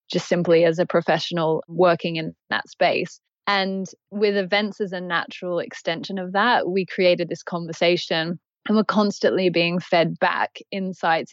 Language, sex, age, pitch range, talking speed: English, female, 20-39, 165-185 Hz, 155 wpm